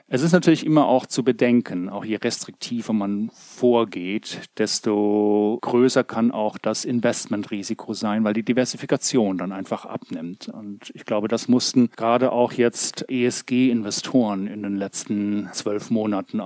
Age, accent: 30-49, German